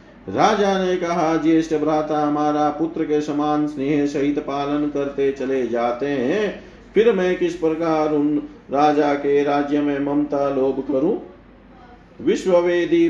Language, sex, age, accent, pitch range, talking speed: Hindi, male, 50-69, native, 150-180 Hz, 135 wpm